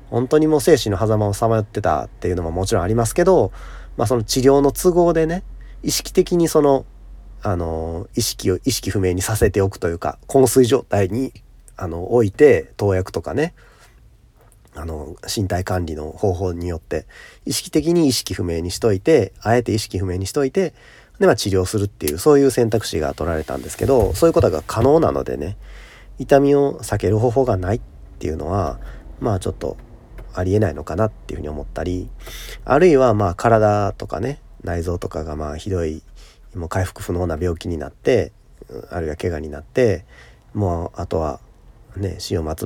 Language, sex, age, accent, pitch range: Japanese, male, 40-59, native, 85-120 Hz